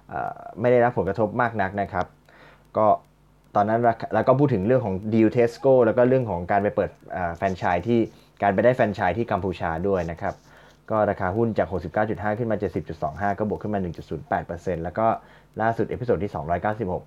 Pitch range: 90-115 Hz